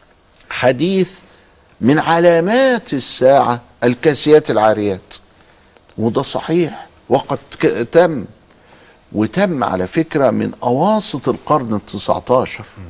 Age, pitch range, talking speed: 50-69, 100-165 Hz, 85 wpm